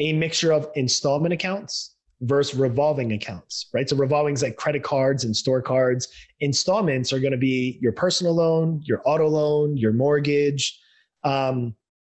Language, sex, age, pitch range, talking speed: English, male, 20-39, 135-155 Hz, 160 wpm